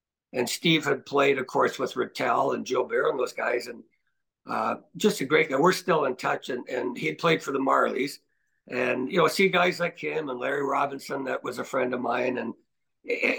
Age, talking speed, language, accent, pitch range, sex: 60-79, 225 wpm, English, American, 155-210 Hz, male